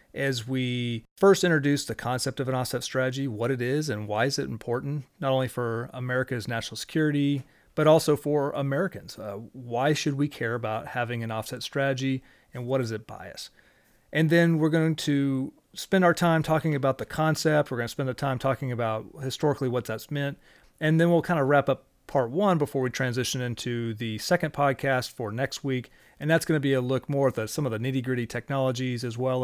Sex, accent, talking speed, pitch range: male, American, 210 wpm, 120-145 Hz